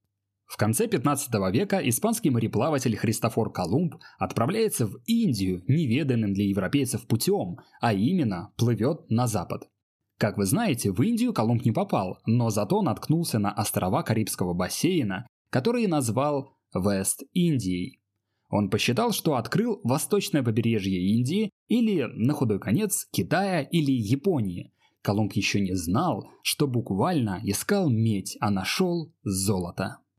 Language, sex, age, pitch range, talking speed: Russian, male, 20-39, 105-150 Hz, 125 wpm